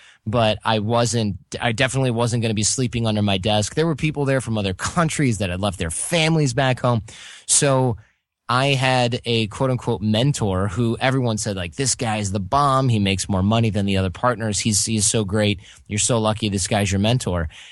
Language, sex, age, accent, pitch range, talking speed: English, male, 20-39, American, 105-130 Hz, 205 wpm